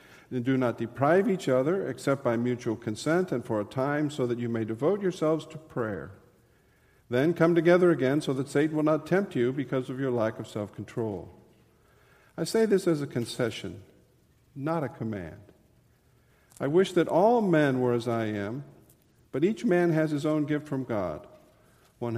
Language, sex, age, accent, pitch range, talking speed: English, male, 50-69, American, 105-150 Hz, 180 wpm